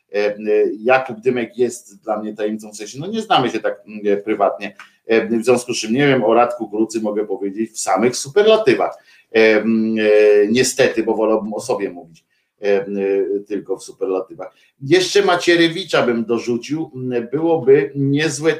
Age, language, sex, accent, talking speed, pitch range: 50-69, Polish, male, native, 135 wpm, 120-190 Hz